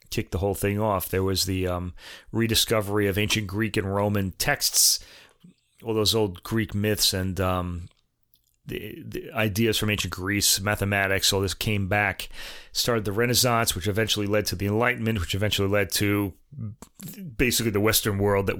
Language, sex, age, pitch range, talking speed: English, male, 30-49, 95-115 Hz, 170 wpm